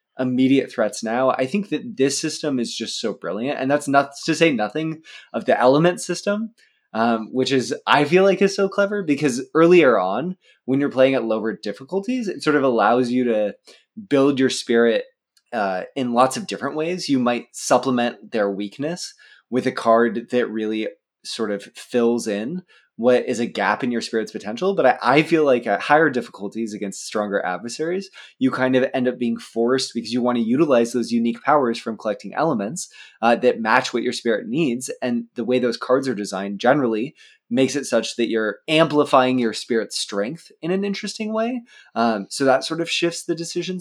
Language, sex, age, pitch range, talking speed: English, male, 20-39, 115-160 Hz, 195 wpm